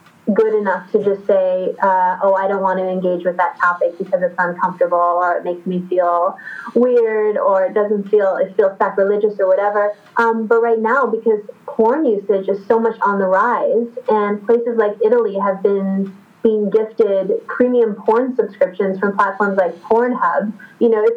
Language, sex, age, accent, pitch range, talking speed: English, female, 20-39, American, 195-240 Hz, 180 wpm